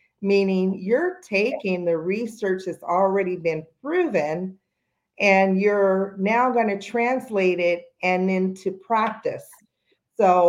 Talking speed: 115 wpm